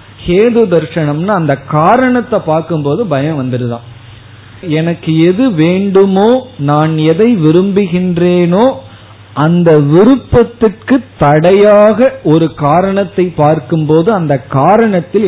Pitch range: 130-195 Hz